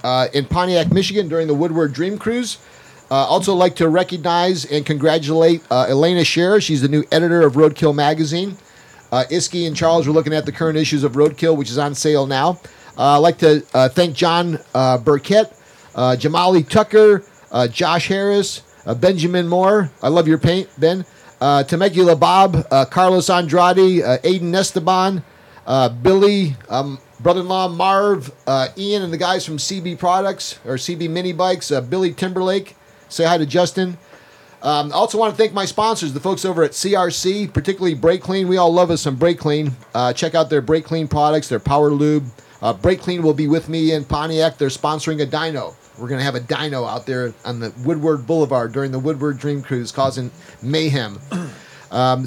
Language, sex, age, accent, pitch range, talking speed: English, male, 40-59, American, 145-180 Hz, 190 wpm